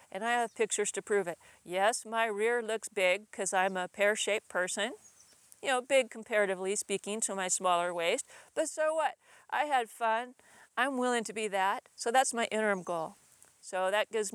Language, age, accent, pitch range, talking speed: English, 40-59, American, 185-225 Hz, 190 wpm